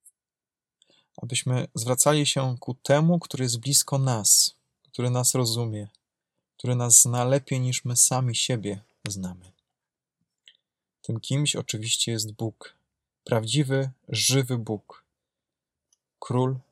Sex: male